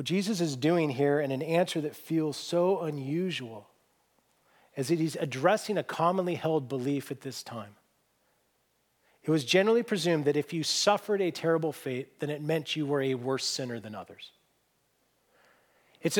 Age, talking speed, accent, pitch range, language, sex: 40-59, 165 wpm, American, 150-200 Hz, English, male